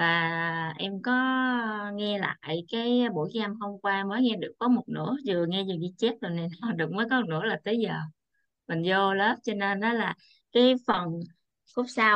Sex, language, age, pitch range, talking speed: female, Vietnamese, 20-39, 185-255 Hz, 205 wpm